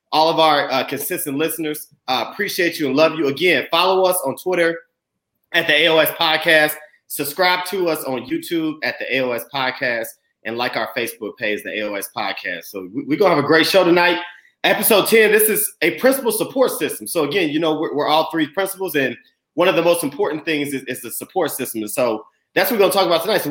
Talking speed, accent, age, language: 220 wpm, American, 30-49, English